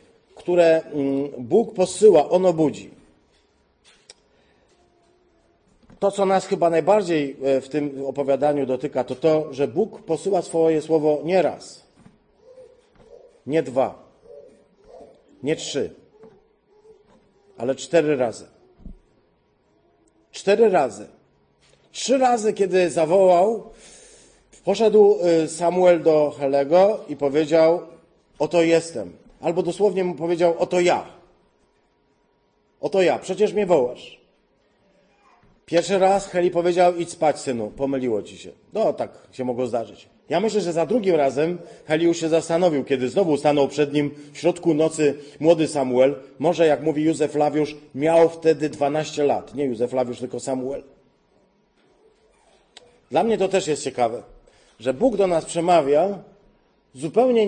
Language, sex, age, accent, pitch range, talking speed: Polish, male, 40-59, native, 145-190 Hz, 120 wpm